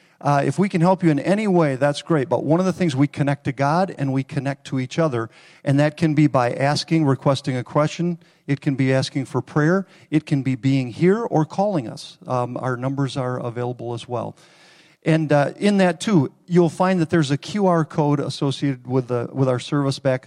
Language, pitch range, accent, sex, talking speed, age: English, 140-170 Hz, American, male, 220 wpm, 50-69